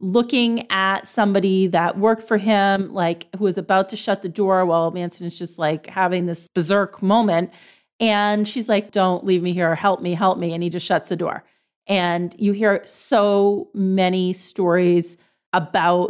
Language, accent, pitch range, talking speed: English, American, 185-230 Hz, 180 wpm